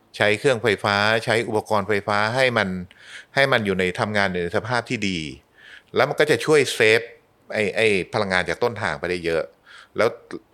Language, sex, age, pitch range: Thai, male, 30-49, 100-130 Hz